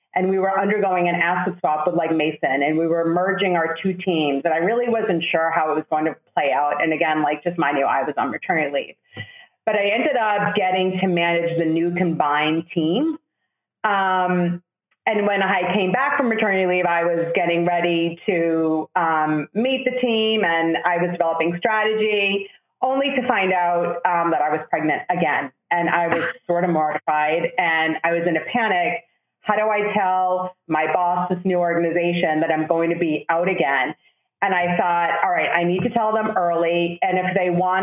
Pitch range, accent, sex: 165-200 Hz, American, female